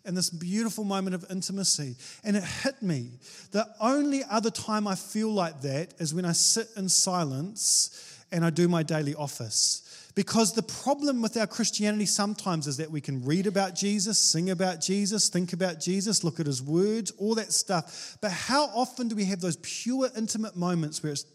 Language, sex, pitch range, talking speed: English, male, 160-205 Hz, 195 wpm